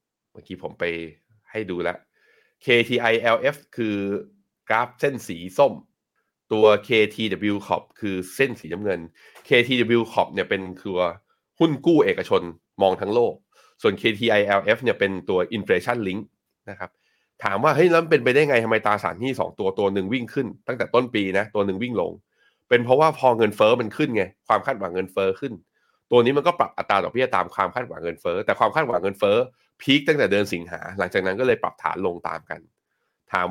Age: 20-39